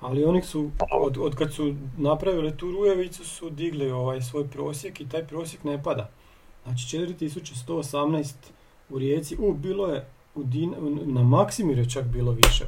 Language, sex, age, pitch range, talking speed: Croatian, male, 40-59, 135-170 Hz, 165 wpm